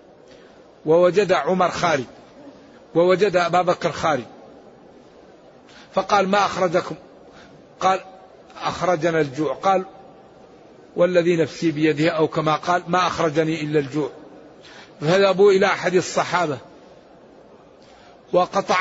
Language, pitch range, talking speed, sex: Arabic, 165-190 Hz, 95 wpm, male